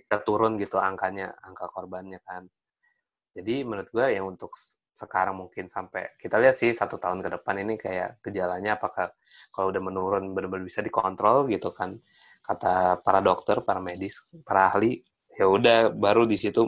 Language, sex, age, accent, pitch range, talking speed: Indonesian, male, 20-39, native, 95-115 Hz, 160 wpm